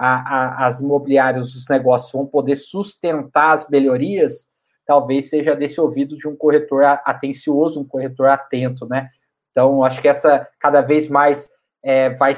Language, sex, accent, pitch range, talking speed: Portuguese, male, Brazilian, 140-160 Hz, 140 wpm